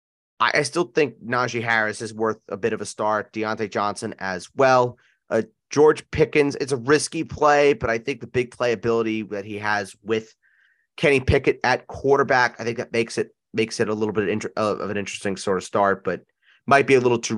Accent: American